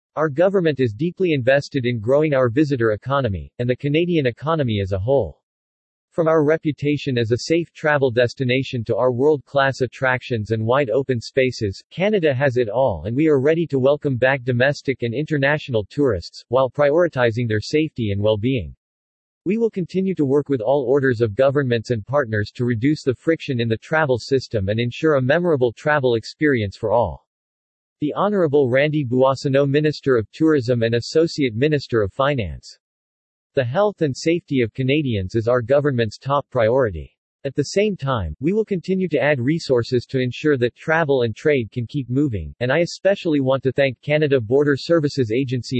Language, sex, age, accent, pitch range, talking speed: English, male, 40-59, American, 120-150 Hz, 180 wpm